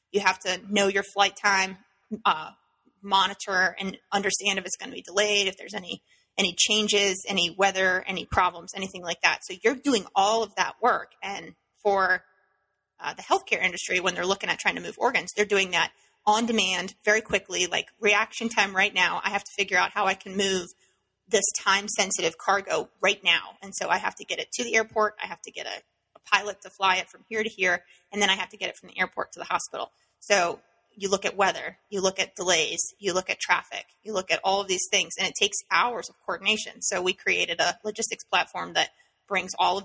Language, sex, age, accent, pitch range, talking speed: English, female, 30-49, American, 185-210 Hz, 225 wpm